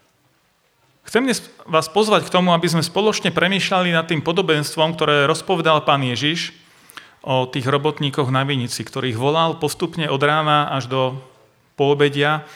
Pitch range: 145-185 Hz